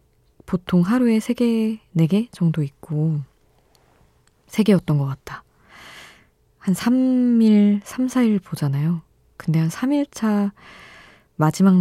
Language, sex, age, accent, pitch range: Korean, female, 20-39, native, 145-185 Hz